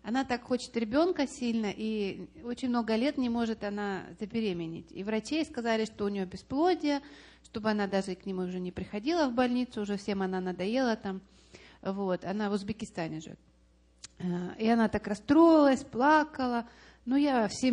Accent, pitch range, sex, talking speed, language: native, 195-255 Hz, female, 160 wpm, Russian